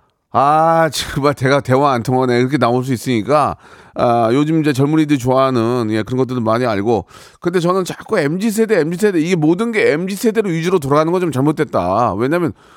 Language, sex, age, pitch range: Korean, male, 40-59, 145-205 Hz